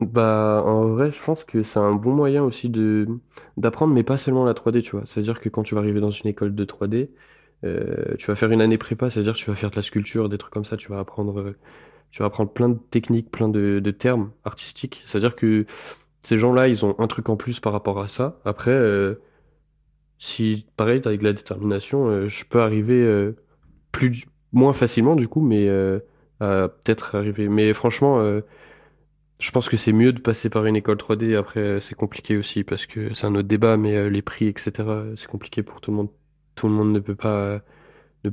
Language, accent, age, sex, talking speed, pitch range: French, French, 20-39, male, 220 wpm, 105-115 Hz